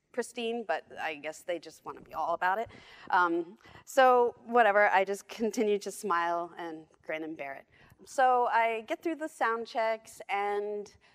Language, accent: English, American